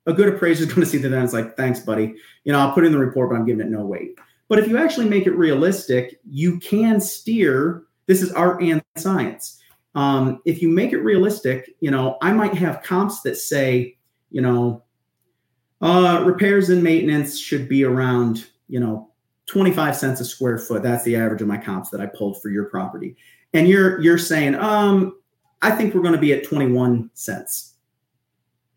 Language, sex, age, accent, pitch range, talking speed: English, male, 40-59, American, 125-185 Hz, 200 wpm